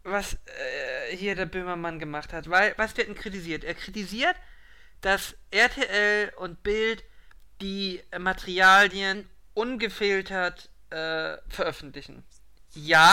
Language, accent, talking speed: German, German, 105 wpm